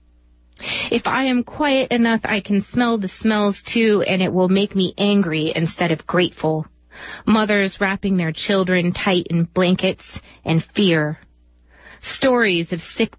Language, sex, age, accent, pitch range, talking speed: English, female, 30-49, American, 155-205 Hz, 145 wpm